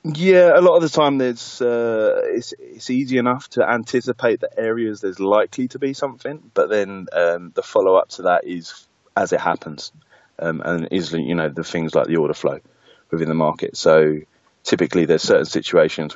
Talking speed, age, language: 190 wpm, 20-39, English